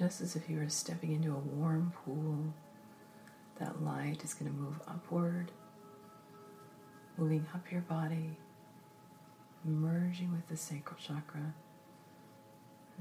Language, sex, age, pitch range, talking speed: English, female, 40-59, 110-175 Hz, 125 wpm